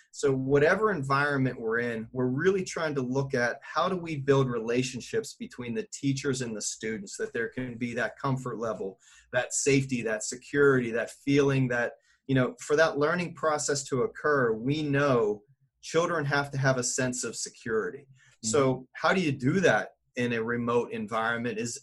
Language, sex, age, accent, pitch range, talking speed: English, male, 30-49, American, 125-150 Hz, 180 wpm